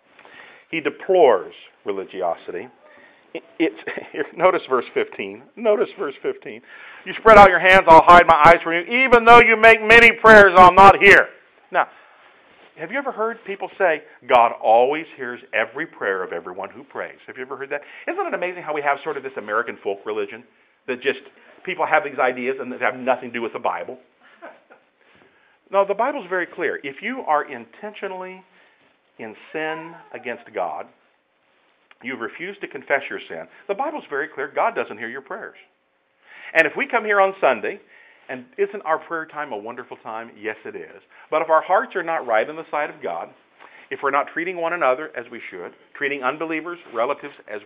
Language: English